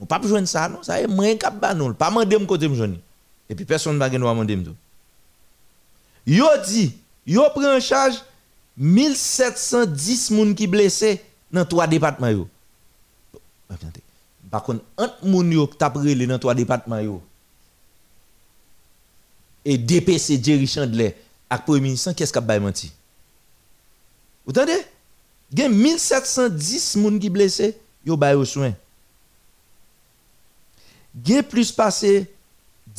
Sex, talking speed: male, 145 wpm